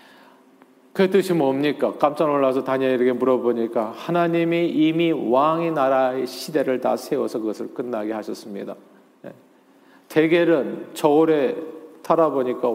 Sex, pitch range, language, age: male, 130-165 Hz, Korean, 40-59